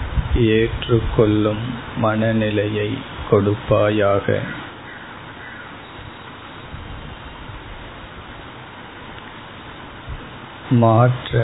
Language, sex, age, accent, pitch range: Tamil, male, 50-69, native, 105-120 Hz